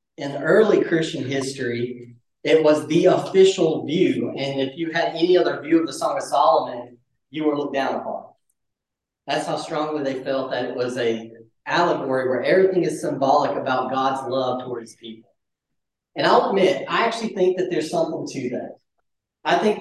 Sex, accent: male, American